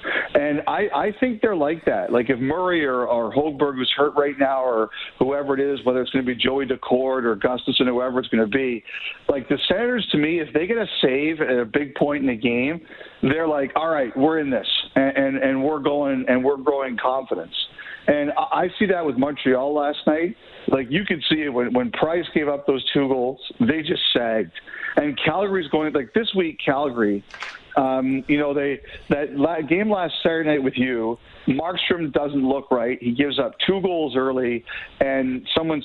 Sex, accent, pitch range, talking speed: male, American, 125-155 Hz, 205 wpm